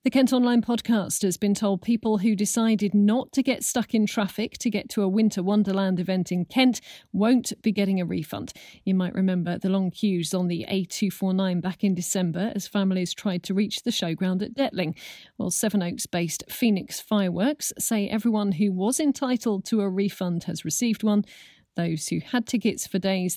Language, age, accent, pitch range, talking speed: English, 40-59, British, 180-230 Hz, 185 wpm